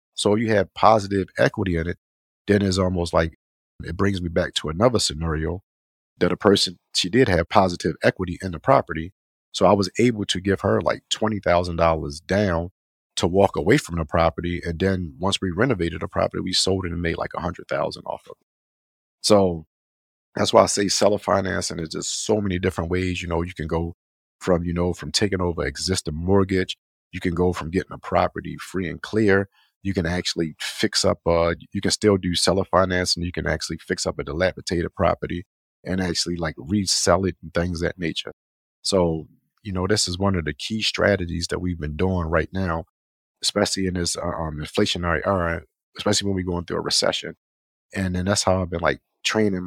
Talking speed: 200 wpm